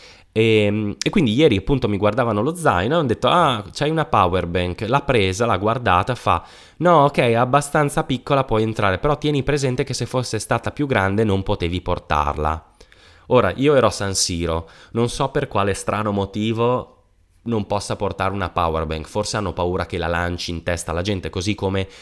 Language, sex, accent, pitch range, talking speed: Italian, male, native, 85-115 Hz, 195 wpm